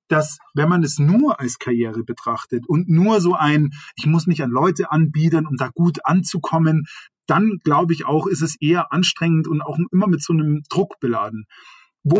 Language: German